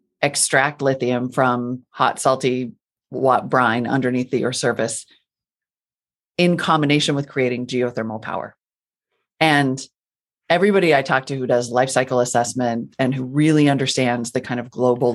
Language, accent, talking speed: English, American, 140 wpm